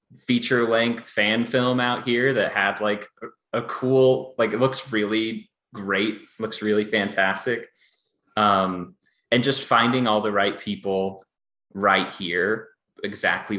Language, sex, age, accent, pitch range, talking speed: English, male, 20-39, American, 95-120 Hz, 130 wpm